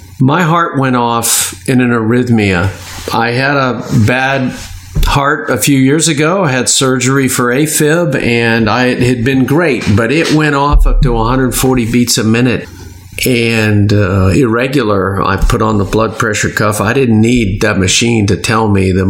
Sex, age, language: male, 50-69, English